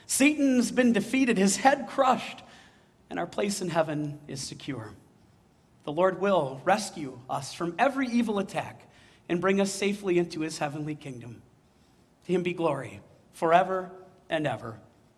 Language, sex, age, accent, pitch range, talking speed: English, male, 40-59, American, 175-235 Hz, 145 wpm